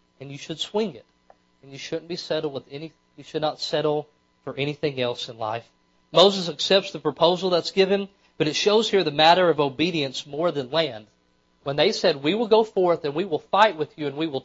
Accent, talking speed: American, 225 wpm